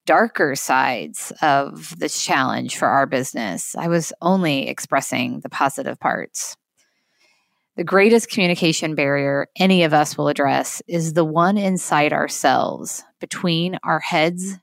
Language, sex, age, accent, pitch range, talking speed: English, female, 20-39, American, 150-200 Hz, 130 wpm